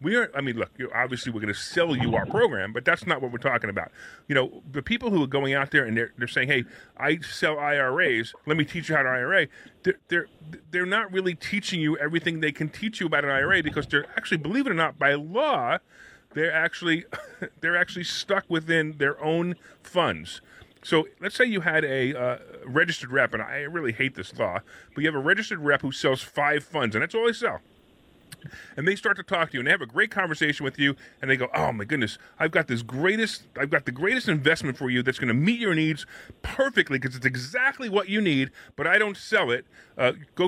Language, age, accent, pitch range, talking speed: English, 30-49, American, 135-190 Hz, 240 wpm